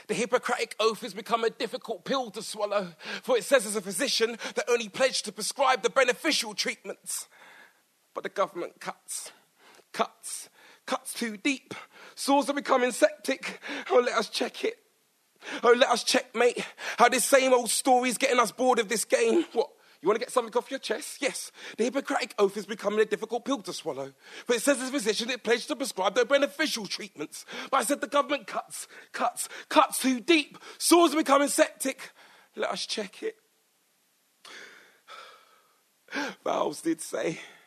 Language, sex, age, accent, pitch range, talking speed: English, male, 30-49, British, 225-285 Hz, 175 wpm